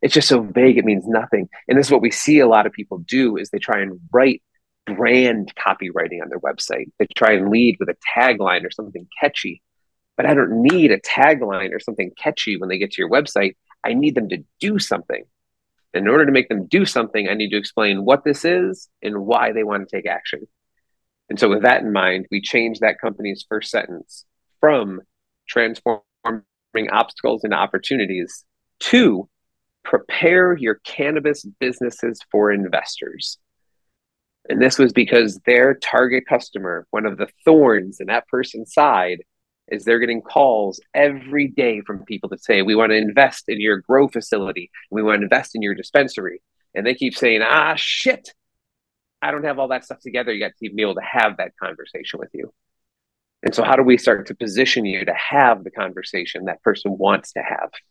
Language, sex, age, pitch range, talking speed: English, male, 30-49, 105-135 Hz, 195 wpm